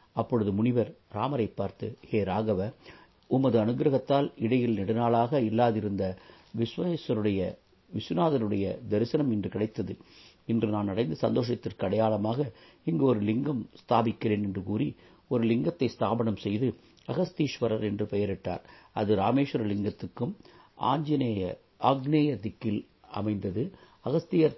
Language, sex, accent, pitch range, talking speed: Tamil, male, native, 105-130 Hz, 100 wpm